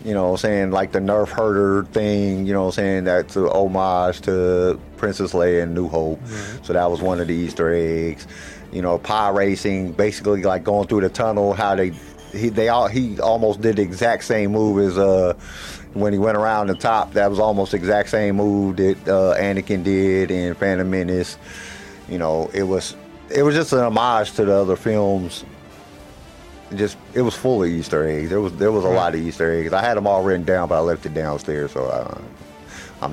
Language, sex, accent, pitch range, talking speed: English, male, American, 85-110 Hz, 210 wpm